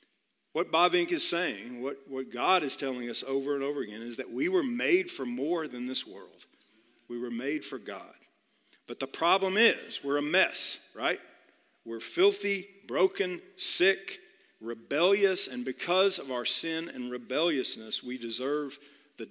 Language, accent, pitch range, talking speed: English, American, 130-190 Hz, 165 wpm